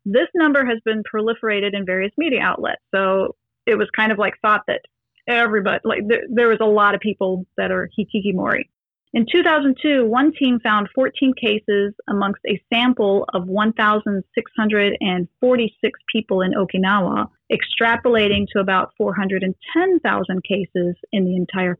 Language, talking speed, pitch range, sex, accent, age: English, 145 wpm, 195-240 Hz, female, American, 30-49